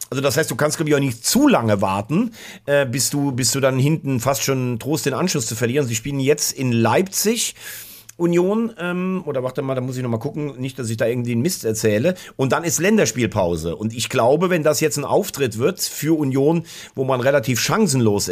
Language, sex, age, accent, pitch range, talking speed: German, male, 40-59, German, 115-145 Hz, 225 wpm